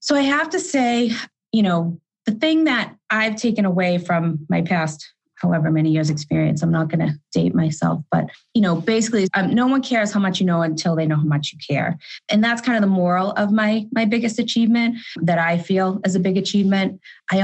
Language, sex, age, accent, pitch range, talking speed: English, female, 20-39, American, 160-205 Hz, 220 wpm